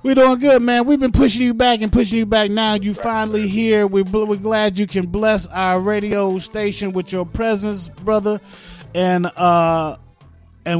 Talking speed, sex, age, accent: 170 wpm, male, 30-49, American